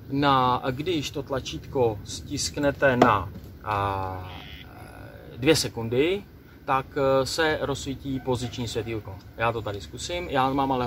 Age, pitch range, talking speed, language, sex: 30-49, 110-135 Hz, 115 wpm, Czech, male